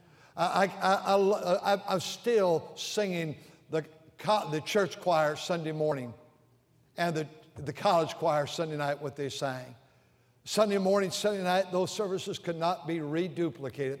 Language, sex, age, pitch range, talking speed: English, male, 60-79, 155-225 Hz, 140 wpm